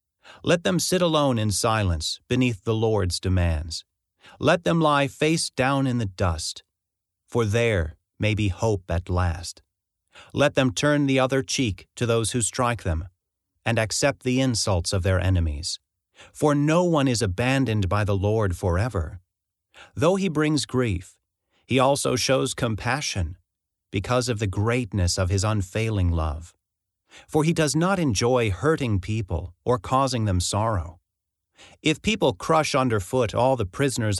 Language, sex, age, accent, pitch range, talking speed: English, male, 40-59, American, 95-135 Hz, 150 wpm